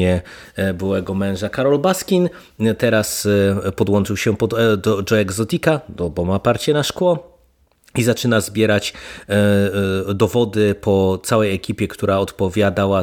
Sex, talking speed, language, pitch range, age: male, 130 wpm, Polish, 95-110 Hz, 30-49